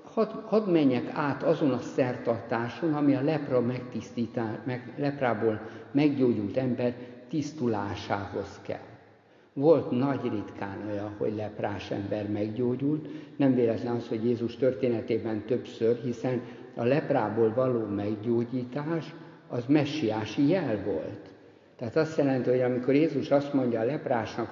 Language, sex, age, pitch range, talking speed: Hungarian, male, 60-79, 115-140 Hz, 120 wpm